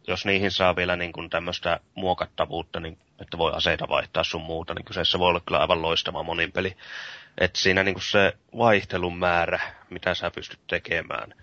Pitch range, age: 85-100 Hz, 30-49